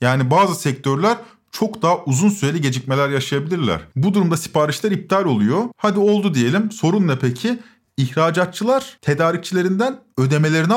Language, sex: Turkish, male